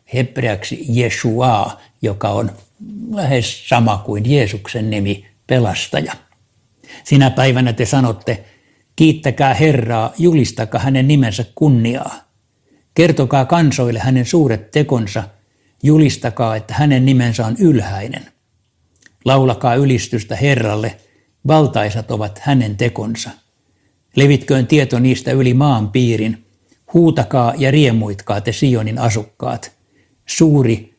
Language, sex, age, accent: Finnish, male, 60-79, native